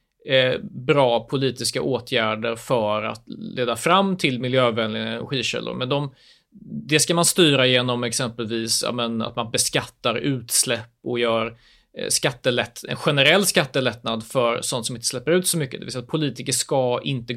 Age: 30-49